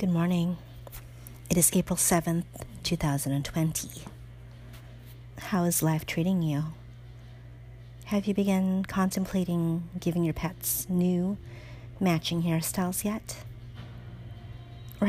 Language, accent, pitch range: English, American, 125-180 Hz